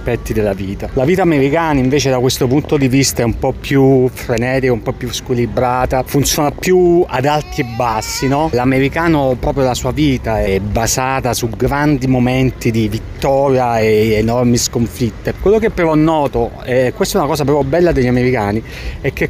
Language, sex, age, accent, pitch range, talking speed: Italian, male, 30-49, native, 120-150 Hz, 180 wpm